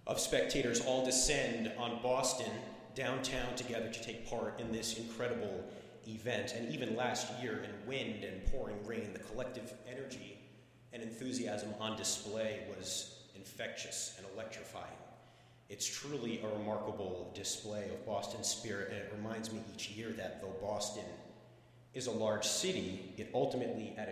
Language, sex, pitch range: English, male, 105-120 Hz